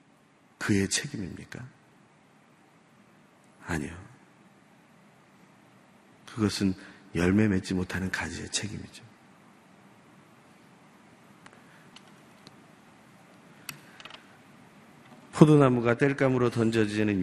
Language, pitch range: Korean, 90-115 Hz